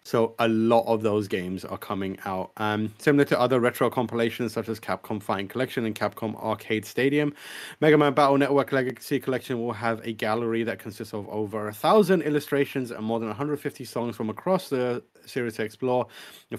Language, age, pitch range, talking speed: English, 30-49, 110-135 Hz, 190 wpm